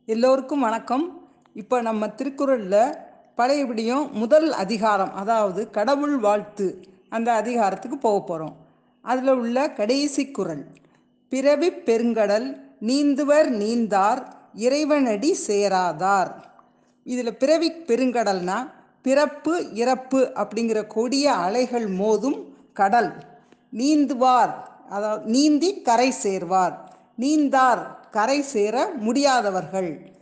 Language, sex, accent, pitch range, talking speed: Tamil, female, native, 205-285 Hz, 85 wpm